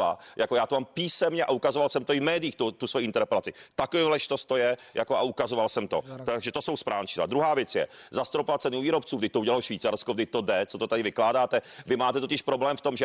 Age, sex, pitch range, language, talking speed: 40-59, male, 130-155 Hz, Czech, 240 wpm